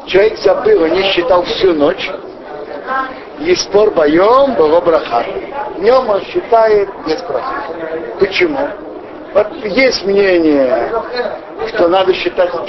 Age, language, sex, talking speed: 60-79, Russian, male, 115 wpm